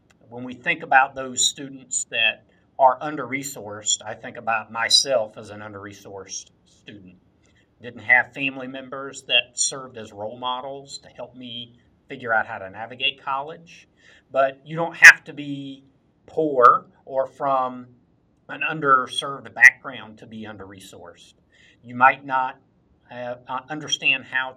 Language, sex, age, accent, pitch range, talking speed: English, male, 50-69, American, 110-135 Hz, 135 wpm